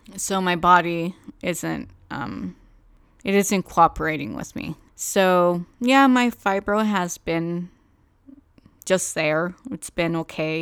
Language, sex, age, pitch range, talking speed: English, female, 20-39, 160-200 Hz, 120 wpm